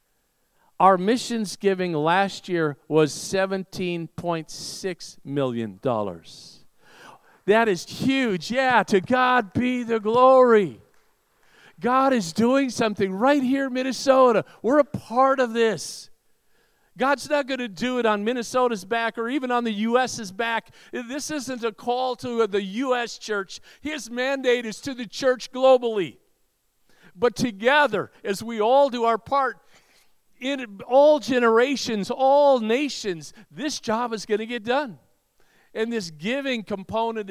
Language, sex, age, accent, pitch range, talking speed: English, male, 50-69, American, 205-255 Hz, 135 wpm